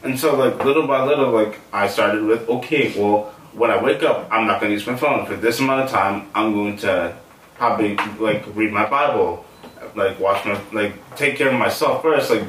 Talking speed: 220 wpm